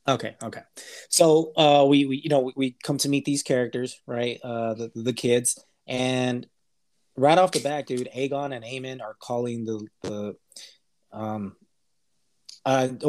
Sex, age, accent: male, 20-39, American